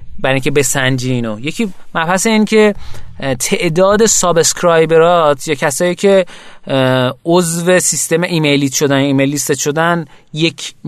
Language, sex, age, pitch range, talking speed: Persian, male, 30-49, 130-170 Hz, 110 wpm